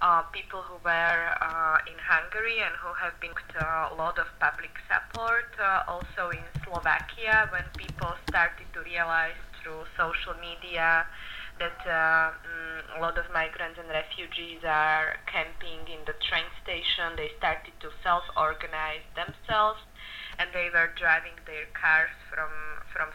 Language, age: Hungarian, 20-39